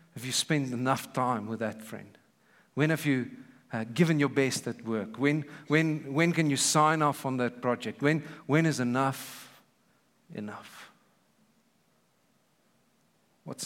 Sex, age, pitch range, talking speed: male, 50-69, 130-175 Hz, 140 wpm